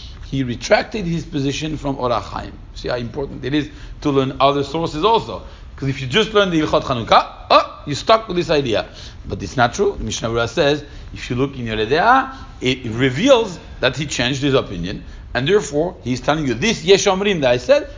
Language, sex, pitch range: English, male, 110-160 Hz